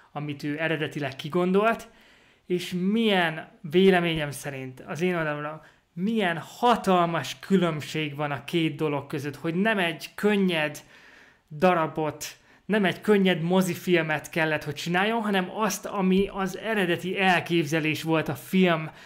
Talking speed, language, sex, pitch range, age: 125 wpm, Hungarian, male, 160-195 Hz, 20-39